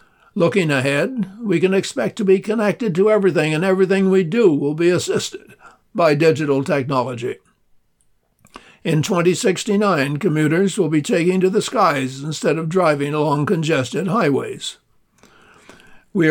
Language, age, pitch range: English, 60-79, 145-195 Hz